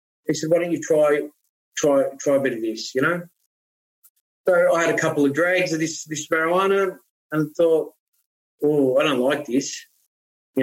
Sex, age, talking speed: male, 30-49, 185 wpm